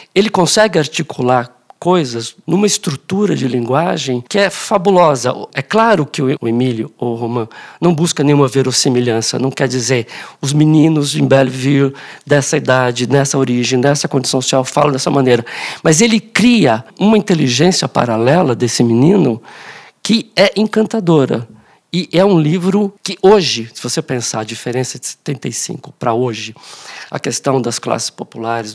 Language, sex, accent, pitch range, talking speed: Portuguese, male, Brazilian, 120-170 Hz, 145 wpm